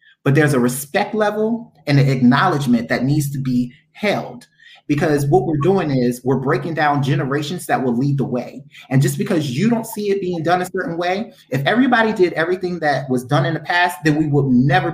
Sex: male